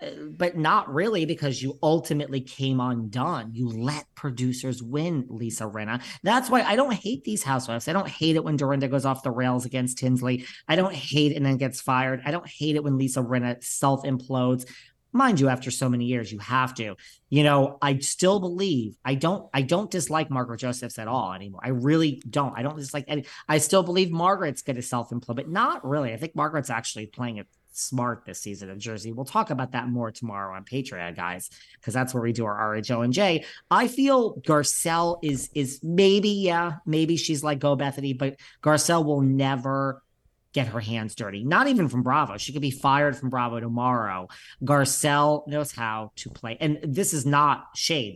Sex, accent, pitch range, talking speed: male, American, 120-155 Hz, 200 wpm